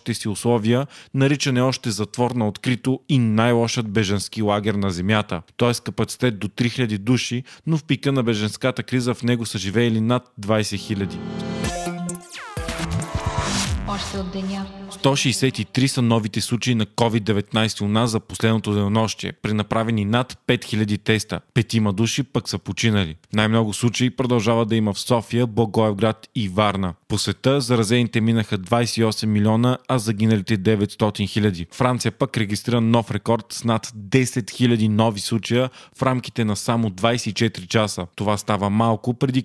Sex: male